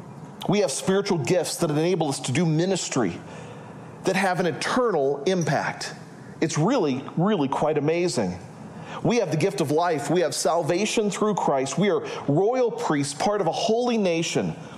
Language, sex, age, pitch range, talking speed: English, male, 40-59, 155-200 Hz, 160 wpm